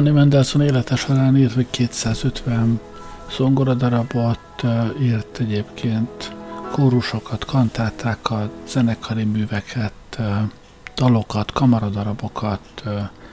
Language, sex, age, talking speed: Hungarian, male, 60-79, 70 wpm